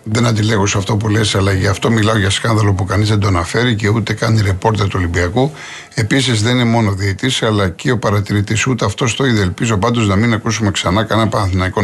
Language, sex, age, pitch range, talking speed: Greek, male, 50-69, 100-130 Hz, 225 wpm